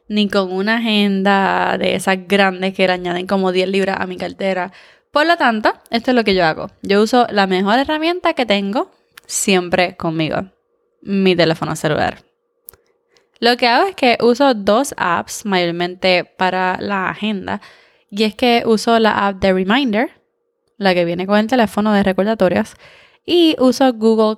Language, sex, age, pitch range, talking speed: Spanish, female, 20-39, 190-240 Hz, 165 wpm